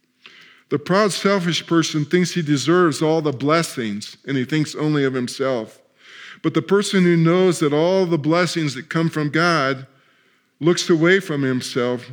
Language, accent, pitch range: English, American, 135-175 Hz